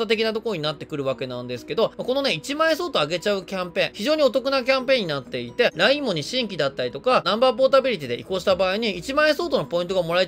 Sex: male